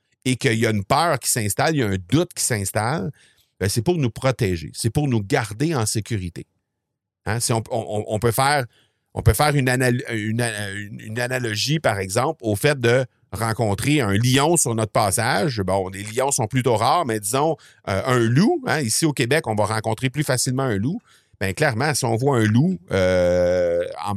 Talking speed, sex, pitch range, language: 205 wpm, male, 110-140 Hz, French